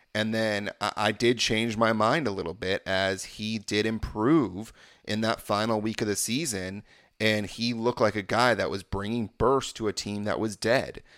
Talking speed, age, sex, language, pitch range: 200 wpm, 30-49, male, English, 100-120 Hz